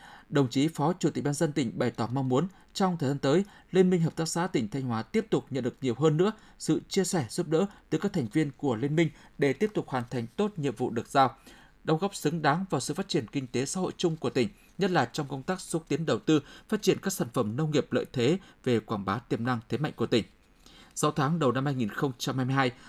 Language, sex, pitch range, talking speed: Vietnamese, male, 135-175 Hz, 260 wpm